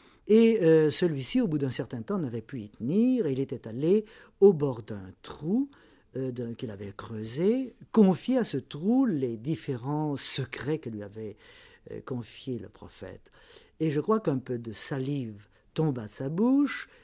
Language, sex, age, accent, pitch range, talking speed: French, male, 50-69, French, 120-165 Hz, 175 wpm